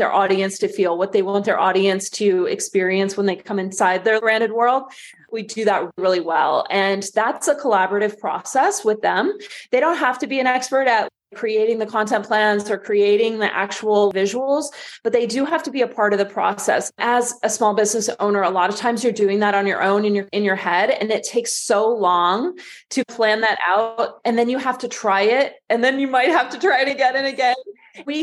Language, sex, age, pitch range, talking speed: English, female, 20-39, 200-255 Hz, 225 wpm